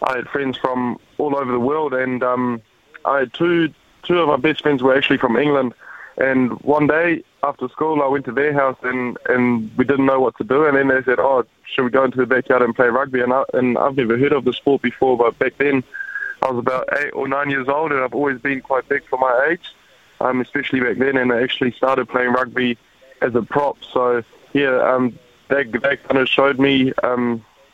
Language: English